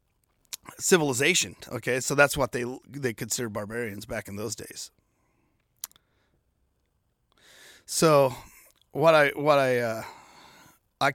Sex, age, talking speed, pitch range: male, 30-49, 110 wpm, 115-135 Hz